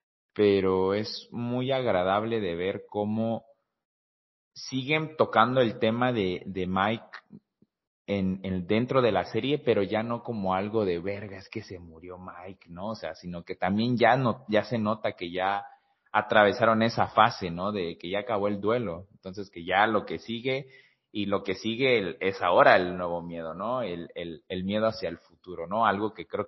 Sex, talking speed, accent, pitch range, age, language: male, 190 wpm, Mexican, 95-110 Hz, 30-49, Spanish